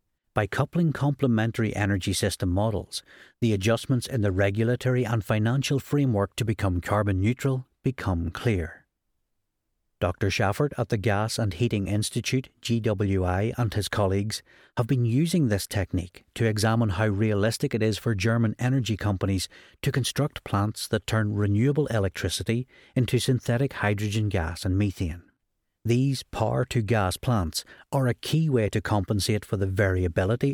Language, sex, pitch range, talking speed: English, male, 100-120 Hz, 140 wpm